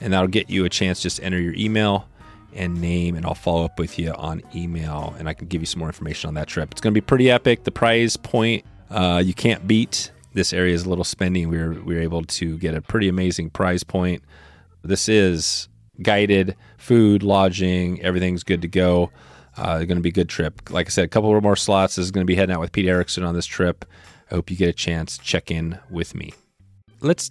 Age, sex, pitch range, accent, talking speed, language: 30-49, male, 90-115 Hz, American, 240 wpm, English